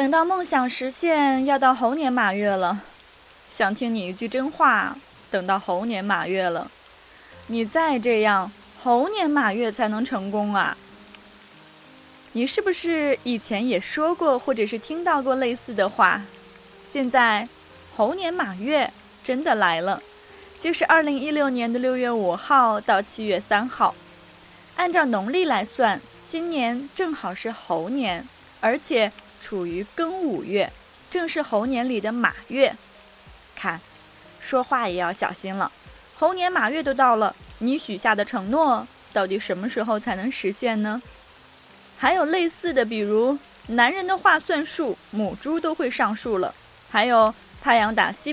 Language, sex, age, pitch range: Chinese, female, 20-39, 215-300 Hz